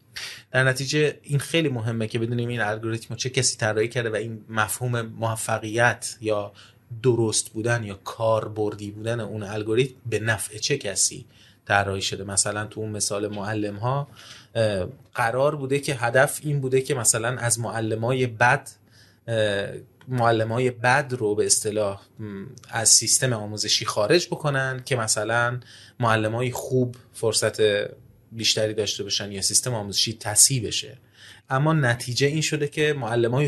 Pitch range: 110-130 Hz